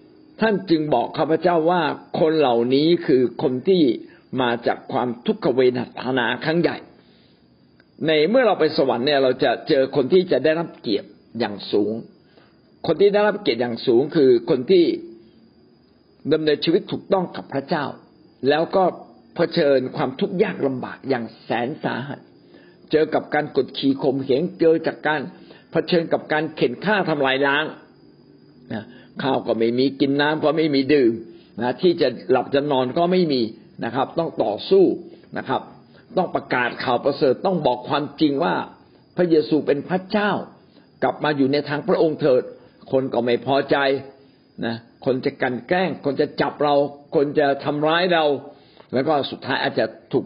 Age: 60-79